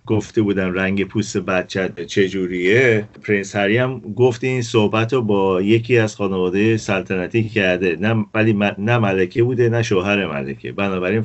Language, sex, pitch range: Persian, male, 90-110 Hz